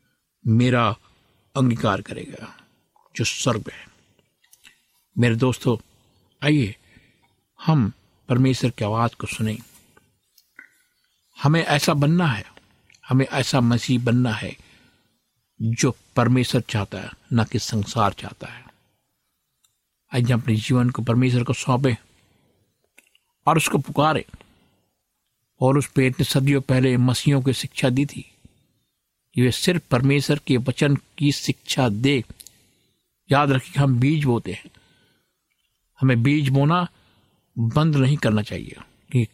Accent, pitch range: native, 115-140 Hz